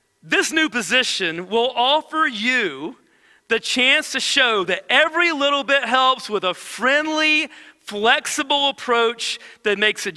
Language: English